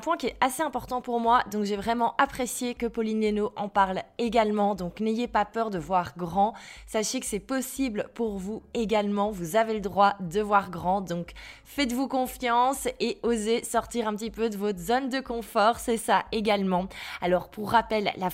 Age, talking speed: 20-39, 195 wpm